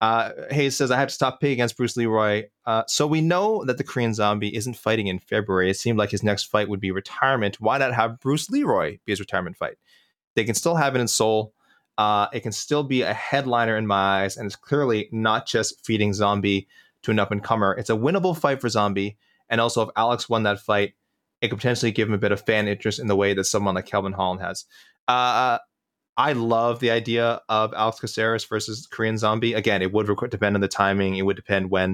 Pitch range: 100-120 Hz